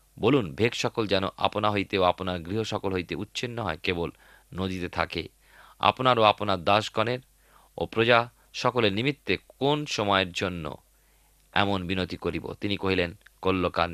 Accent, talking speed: native, 130 wpm